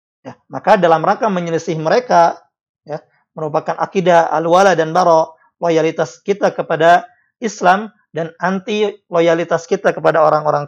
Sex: male